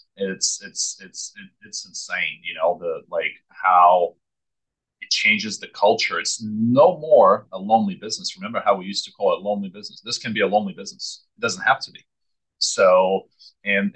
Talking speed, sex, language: 180 wpm, male, English